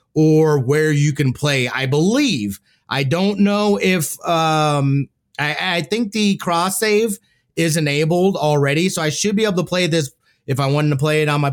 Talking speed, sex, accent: 195 wpm, male, American